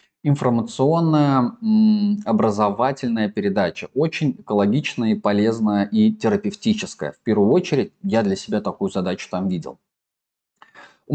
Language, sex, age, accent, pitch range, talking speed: Russian, male, 20-39, native, 100-140 Hz, 110 wpm